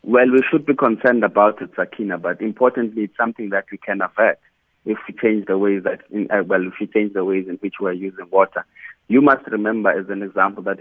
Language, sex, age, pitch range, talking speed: English, male, 30-49, 100-115 Hz, 235 wpm